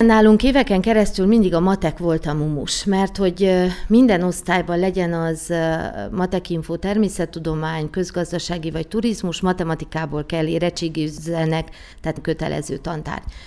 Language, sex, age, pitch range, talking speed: Hungarian, female, 40-59, 165-190 Hz, 115 wpm